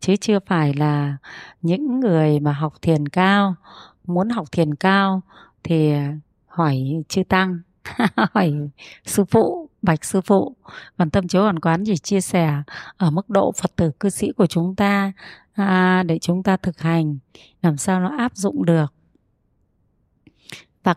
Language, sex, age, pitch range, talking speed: Vietnamese, female, 20-39, 170-250 Hz, 155 wpm